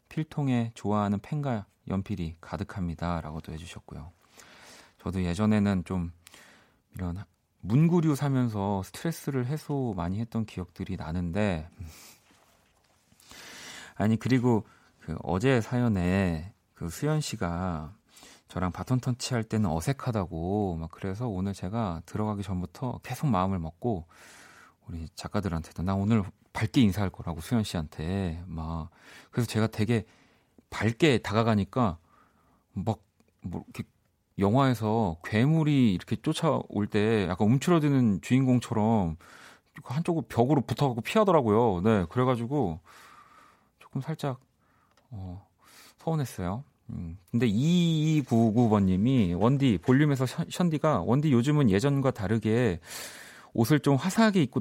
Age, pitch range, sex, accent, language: 40-59, 90-130 Hz, male, native, Korean